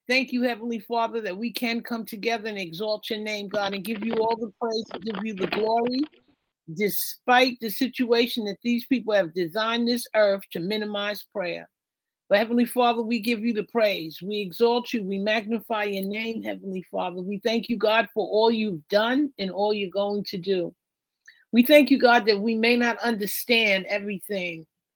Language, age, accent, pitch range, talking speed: English, 50-69, American, 190-235 Hz, 190 wpm